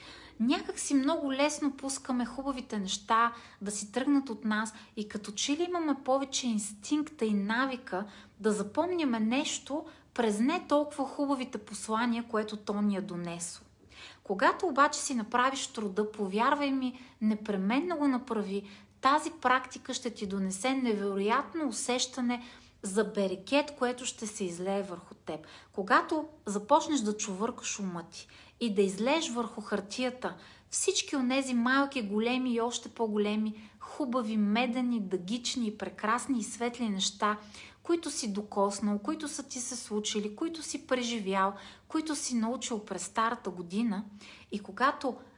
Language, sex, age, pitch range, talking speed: Bulgarian, female, 30-49, 210-270 Hz, 140 wpm